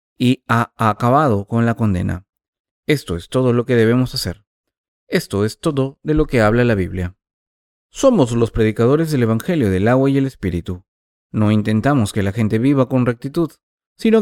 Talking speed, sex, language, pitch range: 175 wpm, male, Spanish, 100-145 Hz